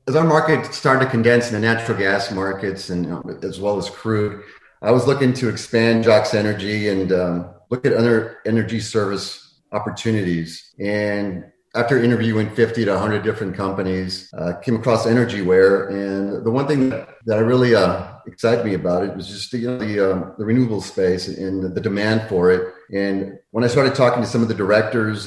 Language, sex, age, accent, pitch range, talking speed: English, male, 30-49, American, 95-115 Hz, 195 wpm